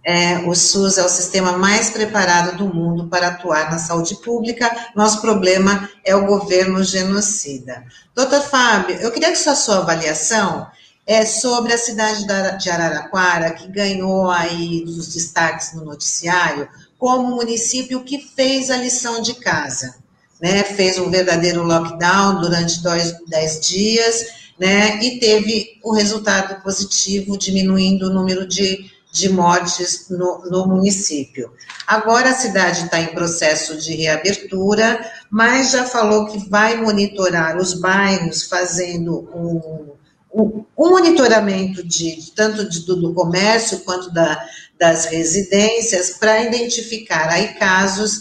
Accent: Brazilian